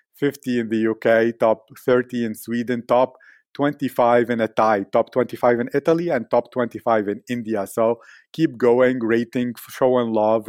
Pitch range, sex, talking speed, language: 110-130 Hz, male, 165 wpm, English